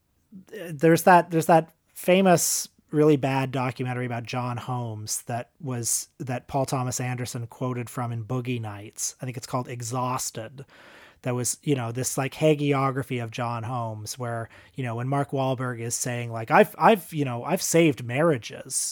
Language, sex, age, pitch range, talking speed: English, male, 30-49, 120-150 Hz, 170 wpm